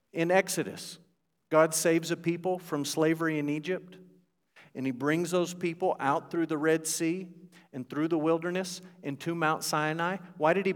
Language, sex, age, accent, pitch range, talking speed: English, male, 50-69, American, 120-170 Hz, 165 wpm